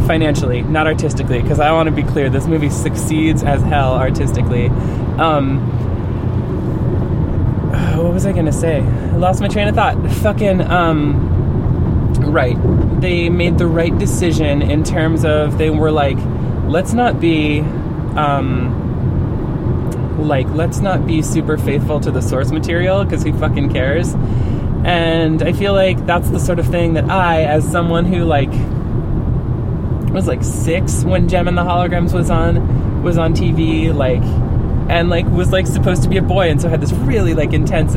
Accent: American